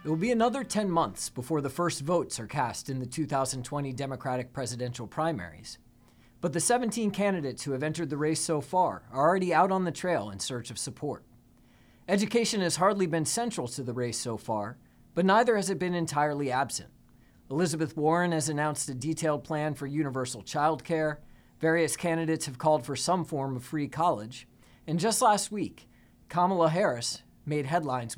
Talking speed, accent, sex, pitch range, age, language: 180 wpm, American, male, 125-180 Hz, 40-59, English